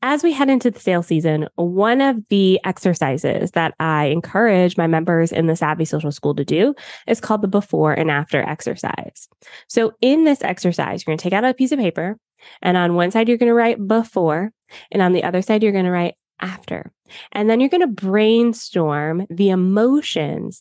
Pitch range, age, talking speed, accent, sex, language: 165-215 Hz, 20-39, 205 wpm, American, female, English